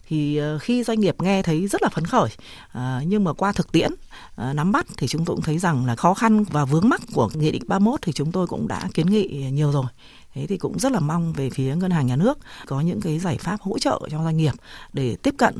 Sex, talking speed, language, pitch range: female, 260 wpm, Vietnamese, 140-195 Hz